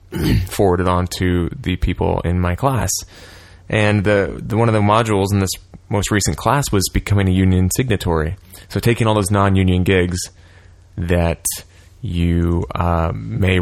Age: 20-39